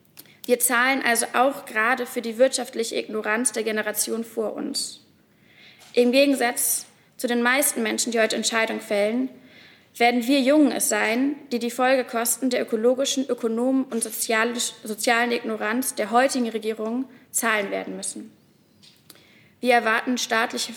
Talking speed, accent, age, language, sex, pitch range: 135 wpm, German, 20-39, German, female, 225-255 Hz